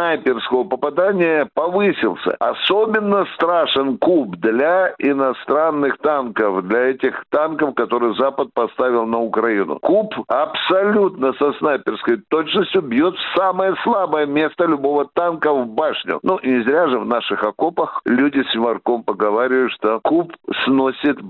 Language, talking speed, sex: Russian, 120 wpm, male